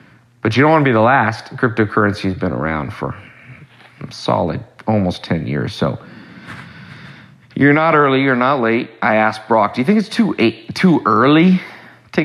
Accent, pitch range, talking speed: American, 90-130 Hz, 175 wpm